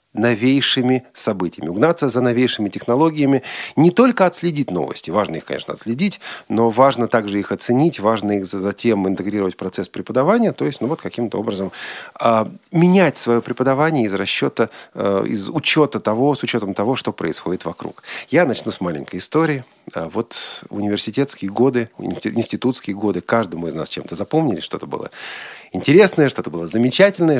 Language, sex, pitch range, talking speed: Russian, male, 115-165 Hz, 155 wpm